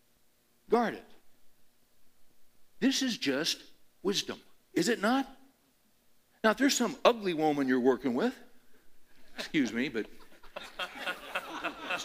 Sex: male